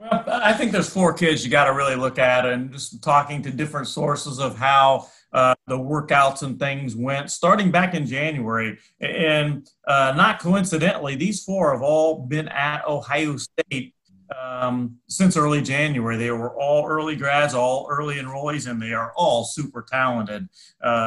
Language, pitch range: English, 125-155 Hz